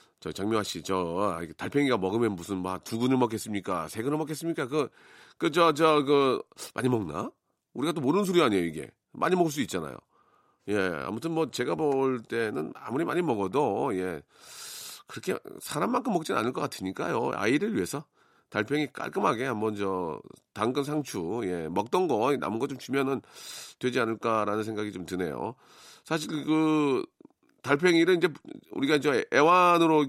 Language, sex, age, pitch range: Korean, male, 40-59, 105-160 Hz